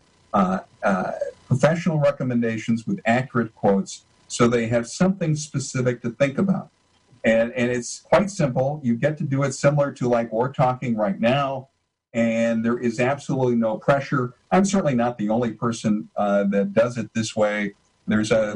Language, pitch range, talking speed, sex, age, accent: English, 110-140 Hz, 170 wpm, male, 50-69, American